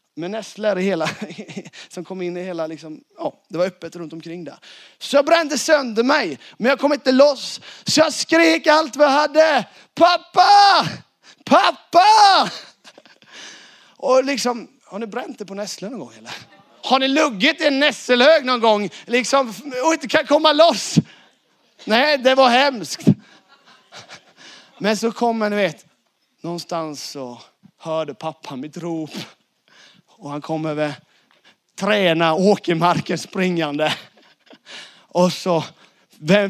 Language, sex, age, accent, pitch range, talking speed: Swedish, male, 30-49, native, 160-255 Hz, 140 wpm